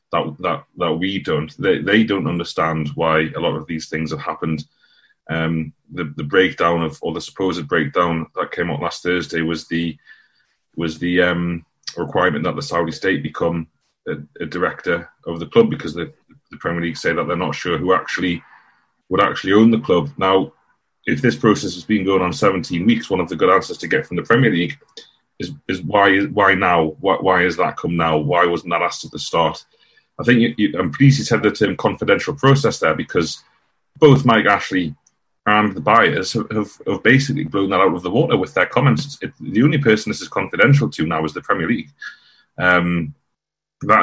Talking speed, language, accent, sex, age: 200 wpm, English, British, male, 30-49